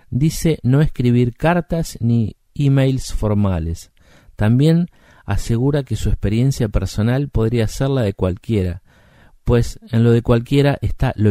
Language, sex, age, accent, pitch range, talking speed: Spanish, male, 50-69, Argentinian, 95-125 Hz, 135 wpm